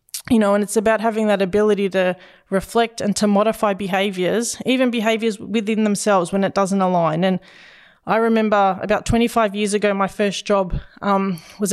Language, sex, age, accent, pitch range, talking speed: English, female, 20-39, Australian, 195-220 Hz, 175 wpm